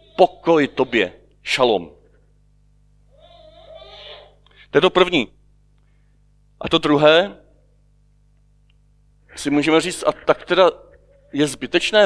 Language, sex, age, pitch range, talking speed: Czech, male, 40-59, 130-155 Hz, 90 wpm